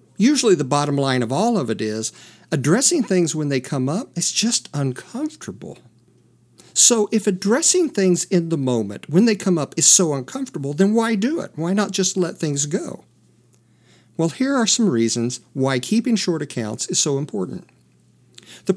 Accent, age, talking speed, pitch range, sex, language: American, 50-69, 175 wpm, 135-200 Hz, male, English